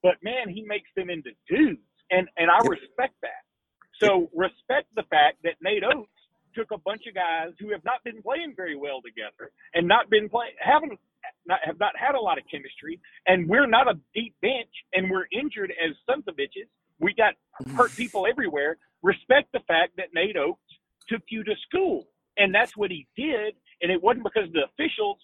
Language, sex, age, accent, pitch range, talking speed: English, male, 40-59, American, 185-270 Hz, 200 wpm